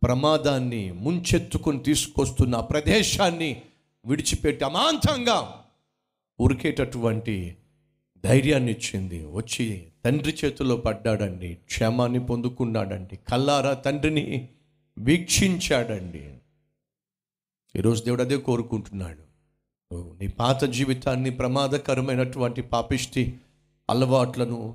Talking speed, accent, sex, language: 70 wpm, native, male, Telugu